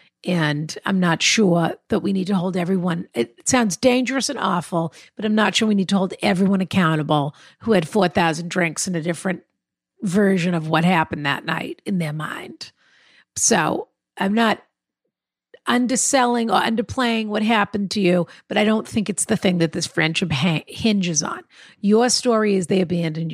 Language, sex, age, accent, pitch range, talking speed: English, female, 50-69, American, 170-225 Hz, 175 wpm